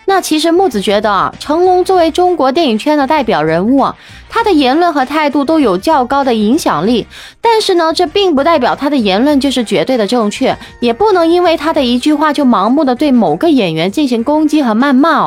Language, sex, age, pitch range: Chinese, female, 20-39, 235-335 Hz